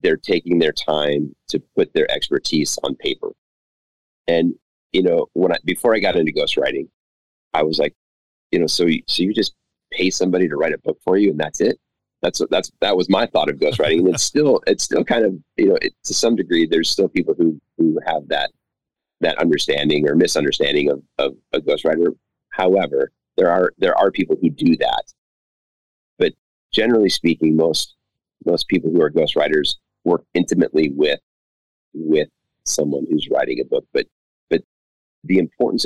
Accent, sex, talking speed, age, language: American, male, 175 wpm, 30-49, English